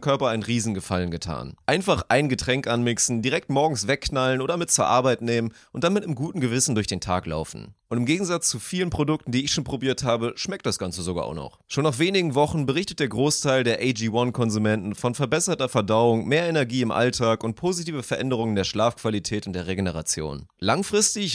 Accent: German